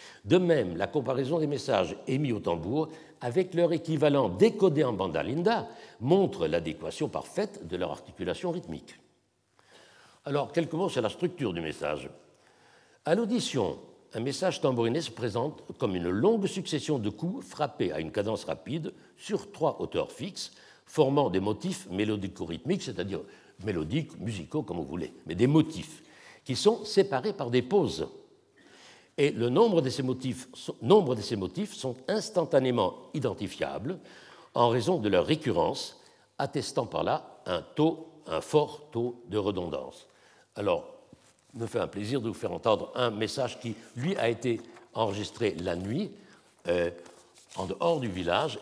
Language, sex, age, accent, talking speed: French, male, 60-79, French, 145 wpm